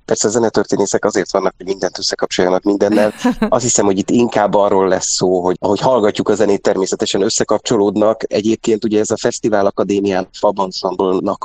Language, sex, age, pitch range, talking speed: Hungarian, male, 30-49, 90-105 Hz, 160 wpm